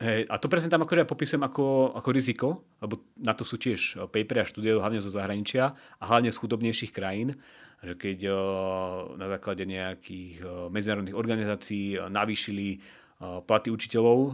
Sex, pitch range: male, 100-115 Hz